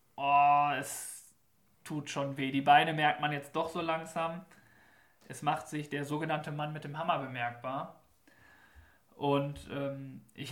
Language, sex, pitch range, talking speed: German, male, 140-170 Hz, 145 wpm